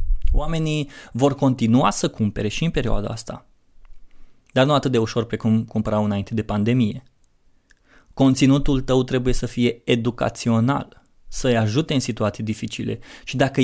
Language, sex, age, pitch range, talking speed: Romanian, male, 20-39, 110-130 Hz, 145 wpm